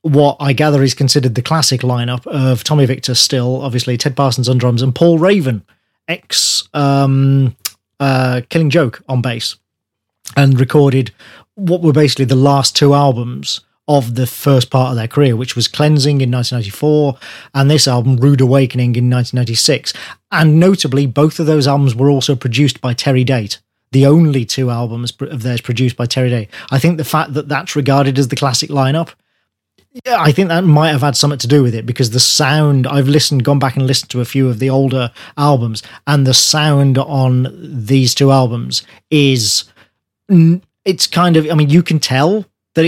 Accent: British